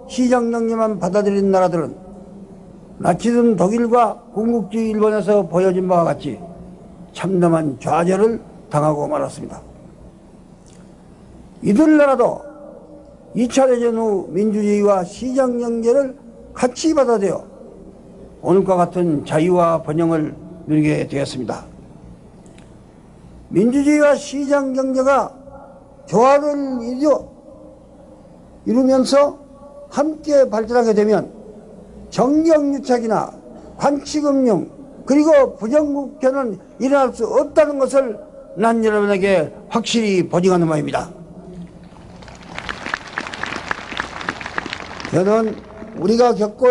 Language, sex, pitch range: Korean, male, 190-270 Hz